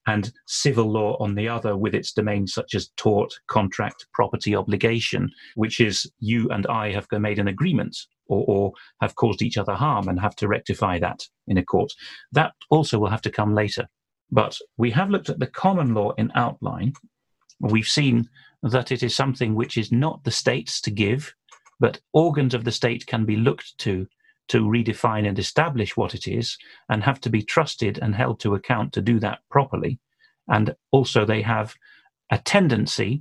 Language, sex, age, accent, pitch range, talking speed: English, male, 40-59, British, 105-125 Hz, 190 wpm